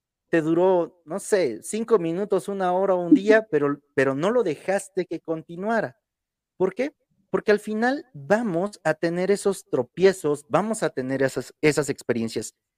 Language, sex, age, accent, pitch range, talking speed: Spanish, male, 40-59, Mexican, 135-195 Hz, 160 wpm